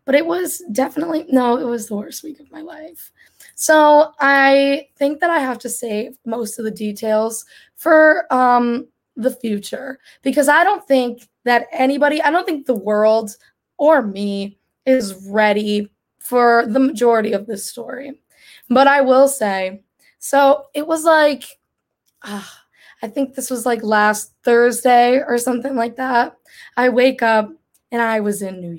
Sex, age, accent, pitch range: female, 10-29, American, 215-275 Hz